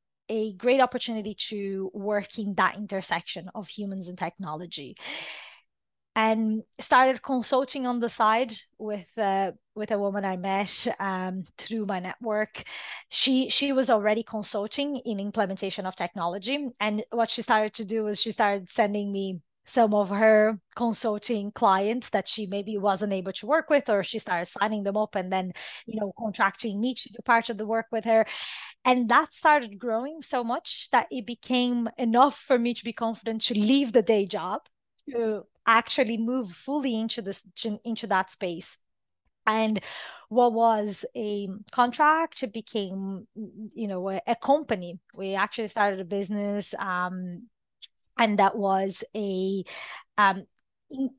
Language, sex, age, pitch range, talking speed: English, female, 20-39, 195-235 Hz, 155 wpm